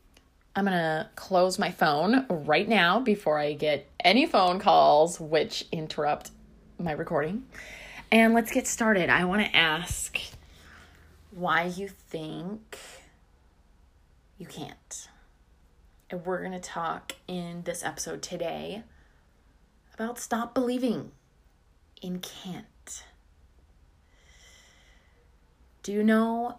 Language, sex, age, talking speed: English, female, 20-39, 110 wpm